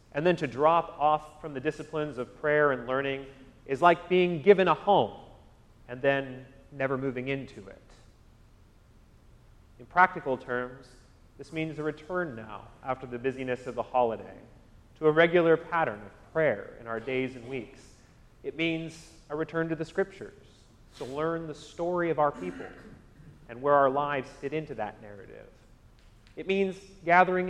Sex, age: male, 30-49